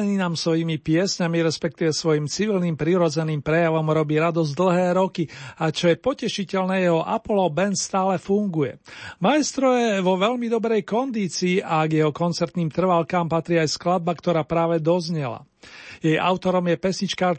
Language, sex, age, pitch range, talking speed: Slovak, male, 40-59, 170-205 Hz, 145 wpm